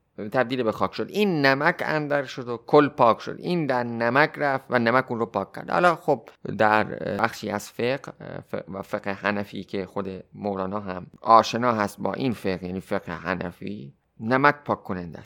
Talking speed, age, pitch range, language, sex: 180 wpm, 30-49, 110-155 Hz, Persian, male